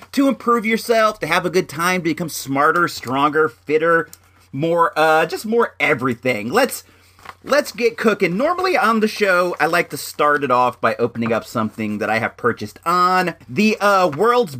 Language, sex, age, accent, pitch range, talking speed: English, male, 40-59, American, 120-200 Hz, 180 wpm